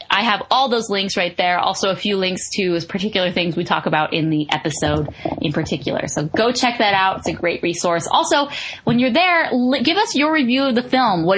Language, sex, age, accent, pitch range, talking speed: English, female, 10-29, American, 180-240 Hz, 225 wpm